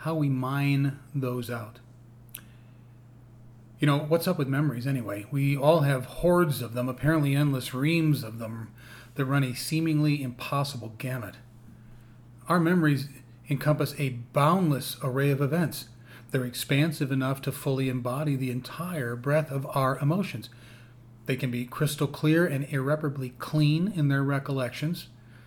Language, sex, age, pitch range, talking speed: English, male, 40-59, 120-150 Hz, 140 wpm